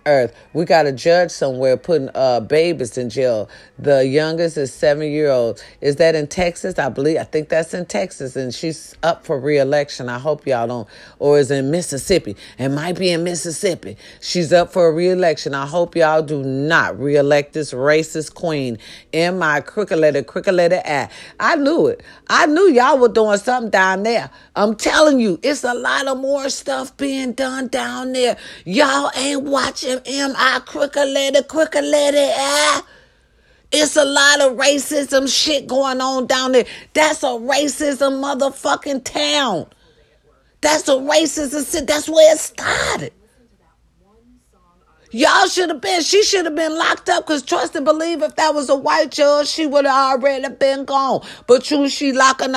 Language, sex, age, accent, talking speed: English, female, 40-59, American, 170 wpm